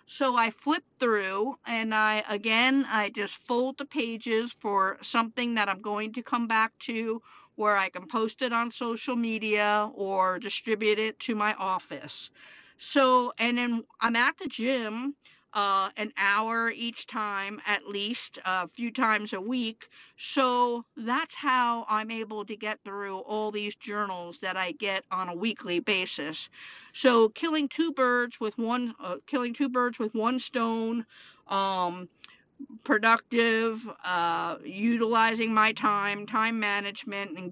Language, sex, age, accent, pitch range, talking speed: English, female, 50-69, American, 205-245 Hz, 150 wpm